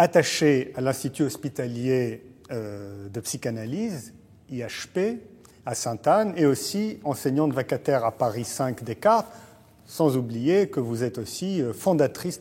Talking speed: 115 wpm